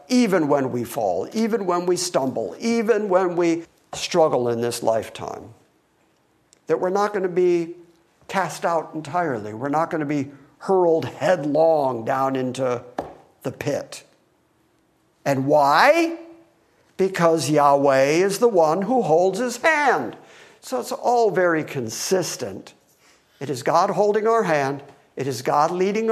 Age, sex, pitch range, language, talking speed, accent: 50-69, male, 145-205 Hz, English, 140 wpm, American